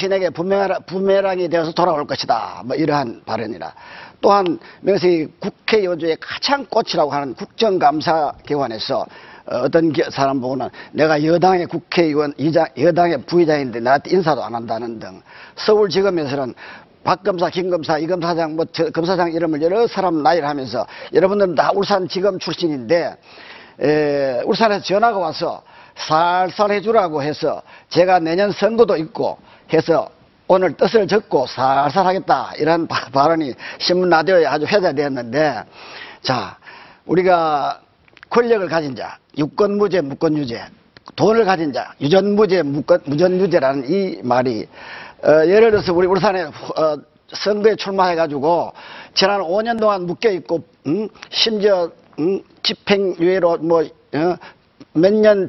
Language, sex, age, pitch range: Korean, male, 40-59, 155-200 Hz